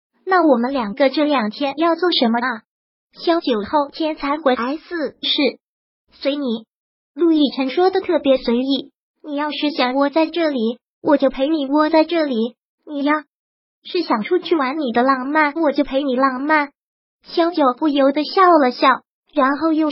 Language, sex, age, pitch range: Chinese, male, 20-39, 260-320 Hz